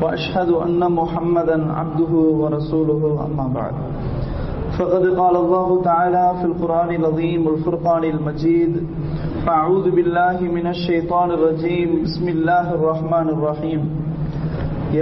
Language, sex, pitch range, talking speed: English, male, 155-175 Hz, 110 wpm